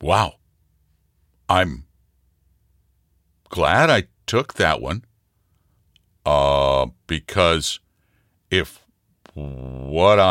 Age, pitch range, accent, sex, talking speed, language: 60-79, 80-115 Hz, American, male, 65 wpm, English